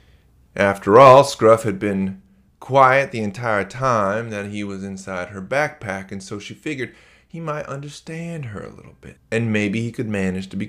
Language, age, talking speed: English, 30-49, 185 wpm